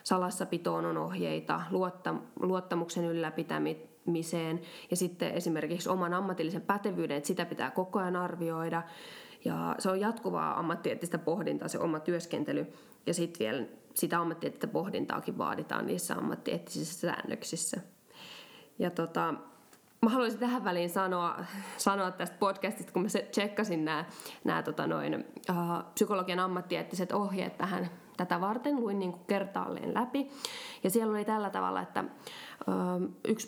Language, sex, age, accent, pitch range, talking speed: Finnish, female, 20-39, native, 170-215 Hz, 125 wpm